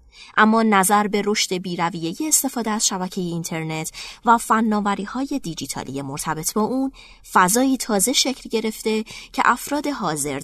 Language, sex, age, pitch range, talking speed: Persian, female, 20-39, 165-225 Hz, 130 wpm